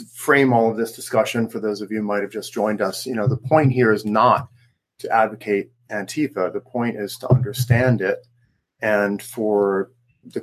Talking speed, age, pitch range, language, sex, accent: 190 wpm, 40-59, 105-130 Hz, English, male, American